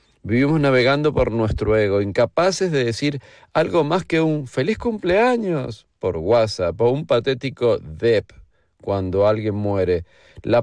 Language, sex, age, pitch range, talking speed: Spanish, male, 40-59, 105-135 Hz, 135 wpm